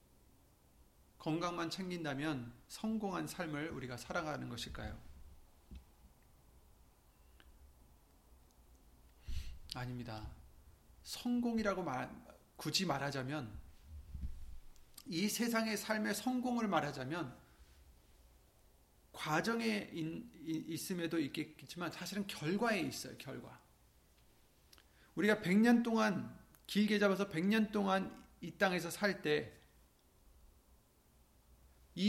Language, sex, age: Korean, male, 40-59